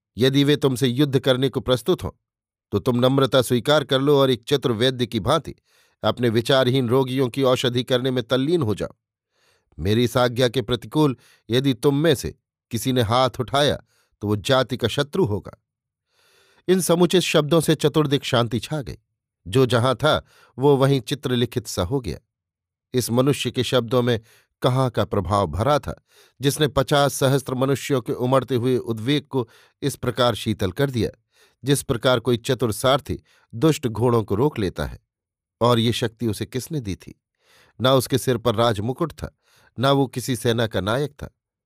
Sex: male